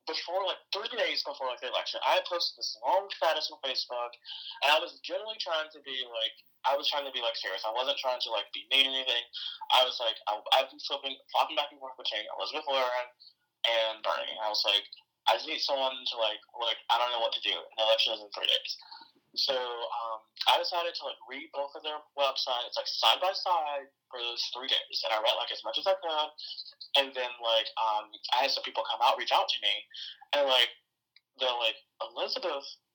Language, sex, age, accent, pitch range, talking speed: English, male, 20-39, American, 125-190 Hz, 225 wpm